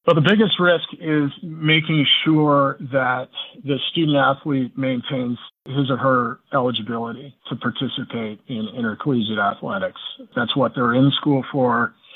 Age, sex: 40-59, male